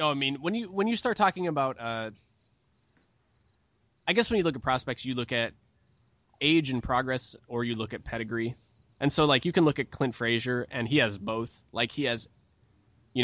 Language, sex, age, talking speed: English, male, 20-39, 210 wpm